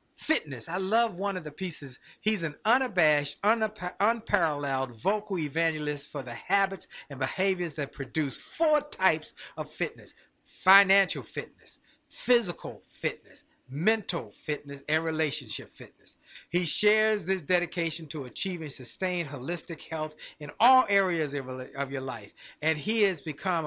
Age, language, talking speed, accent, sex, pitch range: 50-69, English, 130 wpm, American, male, 150-195 Hz